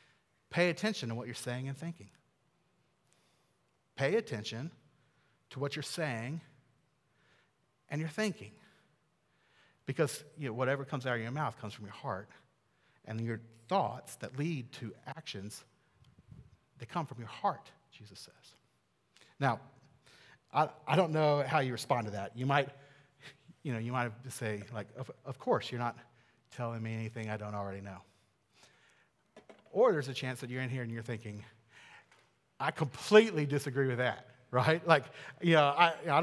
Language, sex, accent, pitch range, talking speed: English, male, American, 120-190 Hz, 160 wpm